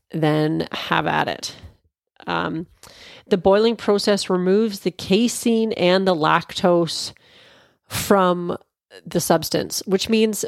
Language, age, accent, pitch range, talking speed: English, 30-49, American, 165-205 Hz, 110 wpm